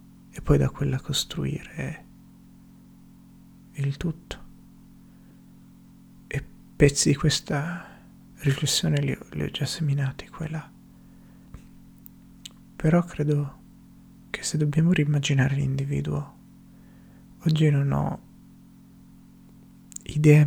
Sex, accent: male, native